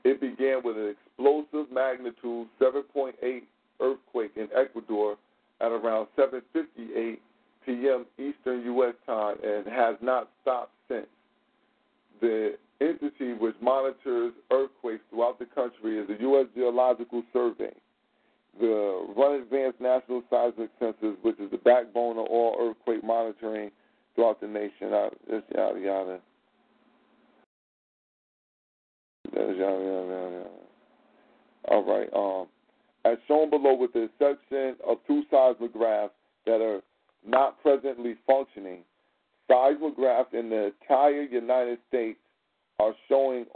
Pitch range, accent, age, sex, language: 110-135 Hz, American, 40-59, male, Japanese